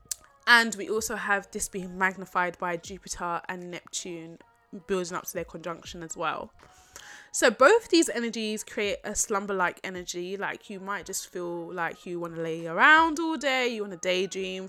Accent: British